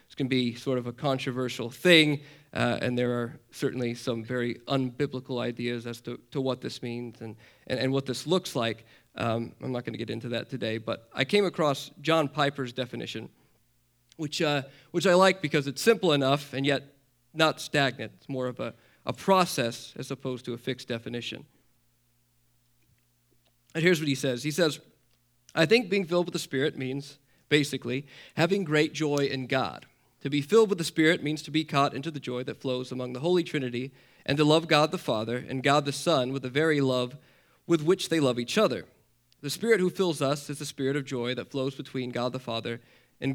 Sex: male